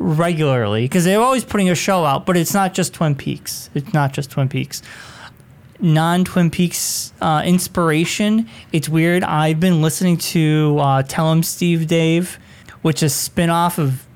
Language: English